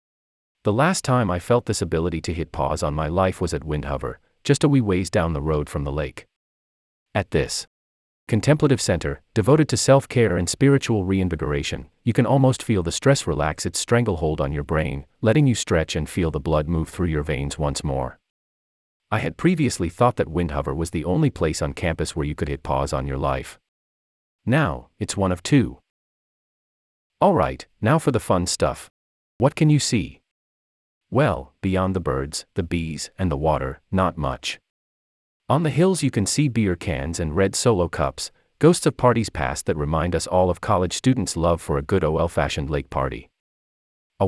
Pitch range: 75-115 Hz